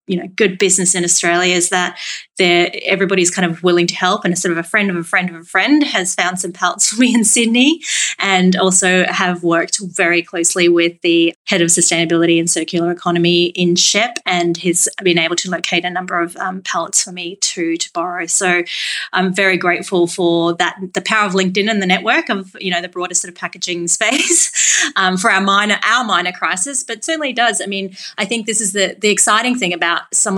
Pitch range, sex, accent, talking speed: 175-195 Hz, female, Australian, 220 wpm